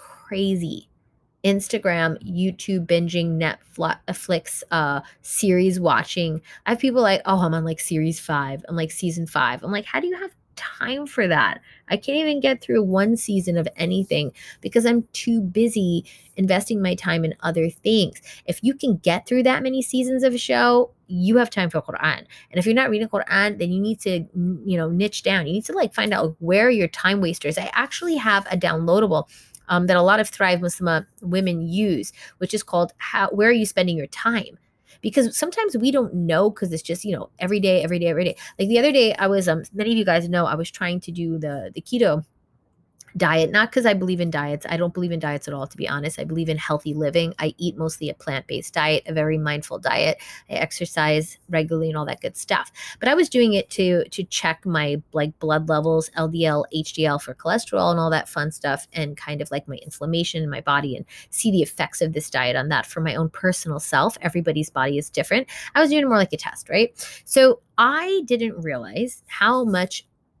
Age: 20-39